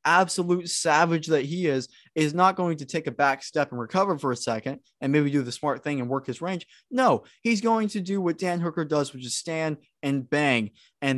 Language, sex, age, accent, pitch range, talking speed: English, male, 20-39, American, 130-170 Hz, 230 wpm